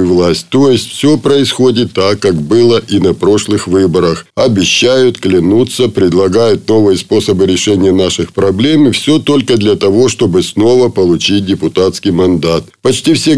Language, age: Russian, 50-69